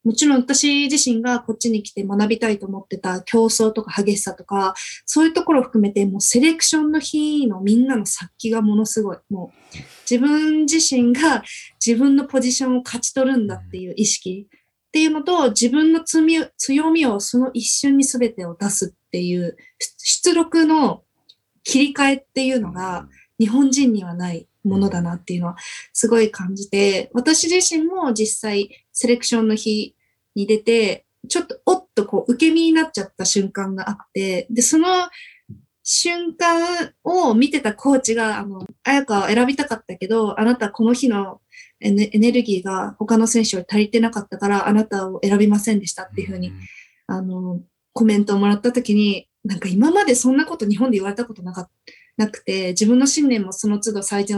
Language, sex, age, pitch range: Japanese, female, 20-39, 200-275 Hz